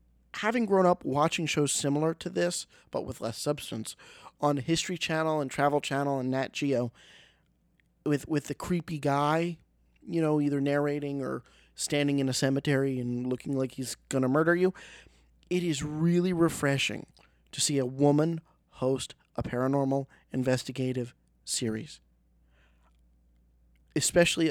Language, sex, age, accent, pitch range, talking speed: English, male, 40-59, American, 130-155 Hz, 140 wpm